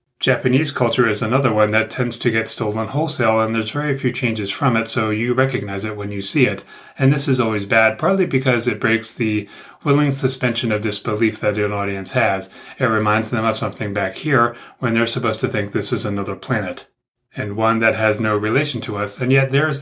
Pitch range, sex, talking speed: 105-130 Hz, male, 220 wpm